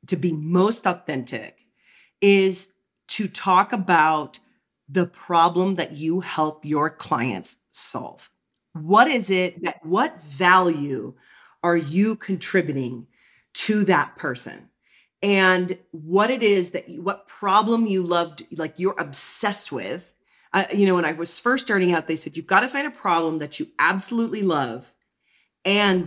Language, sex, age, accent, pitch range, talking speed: English, female, 40-59, American, 165-200 Hz, 145 wpm